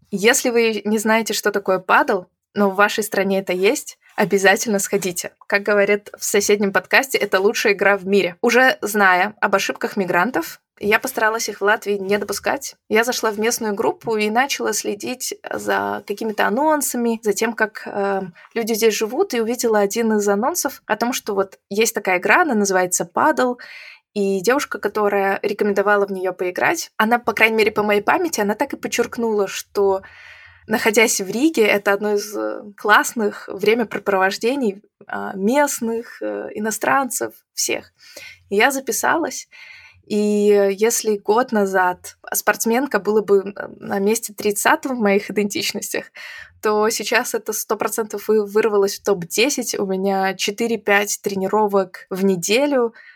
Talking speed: 145 wpm